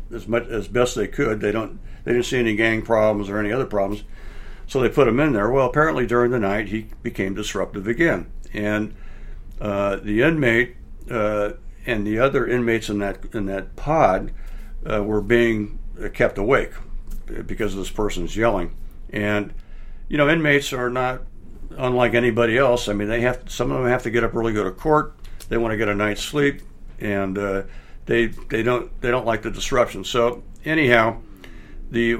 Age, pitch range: 60-79, 100-120 Hz